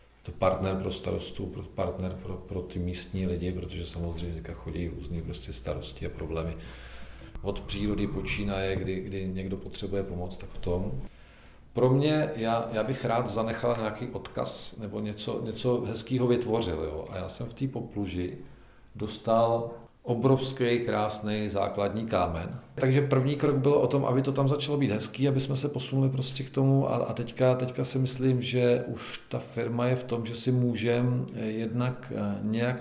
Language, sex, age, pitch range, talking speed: Czech, male, 40-59, 95-120 Hz, 165 wpm